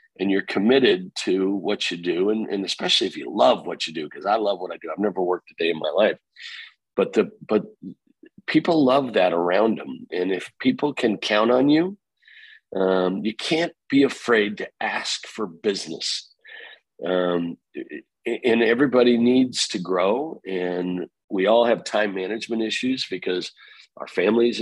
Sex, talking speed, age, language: male, 175 wpm, 50-69, English